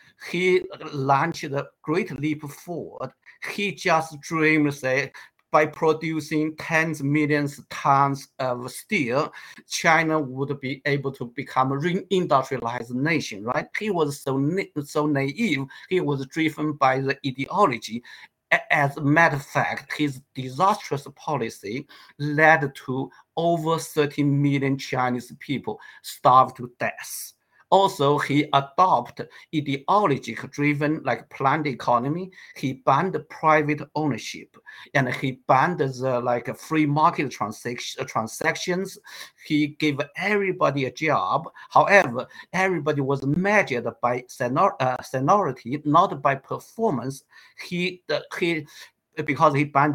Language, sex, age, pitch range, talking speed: English, male, 50-69, 130-160 Hz, 125 wpm